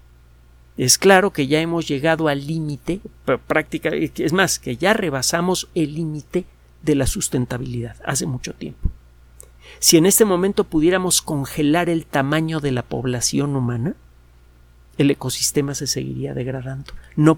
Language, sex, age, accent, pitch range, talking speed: Spanish, male, 50-69, Mexican, 125-165 Hz, 140 wpm